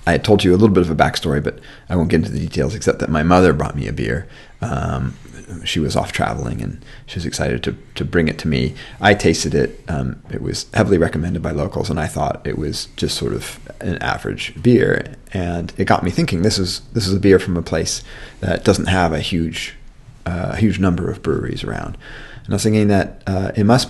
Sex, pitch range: male, 80-105 Hz